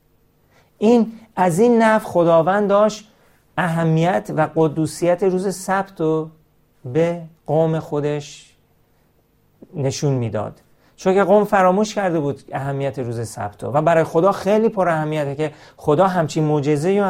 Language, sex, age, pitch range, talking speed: Persian, male, 40-59, 135-170 Hz, 120 wpm